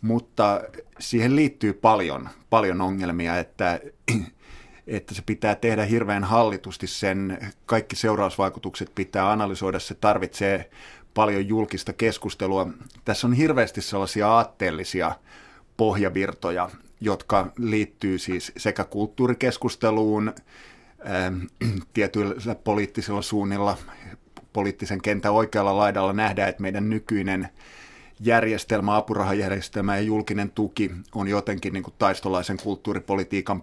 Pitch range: 95-110 Hz